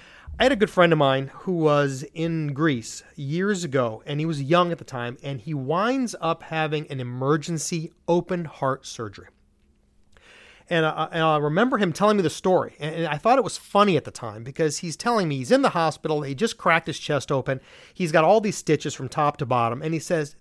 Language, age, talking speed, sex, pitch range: English, 30-49, 220 wpm, male, 150-210 Hz